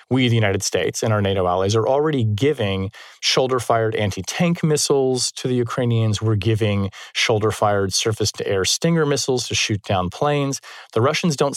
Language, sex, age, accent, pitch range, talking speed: English, male, 30-49, American, 105-135 Hz, 155 wpm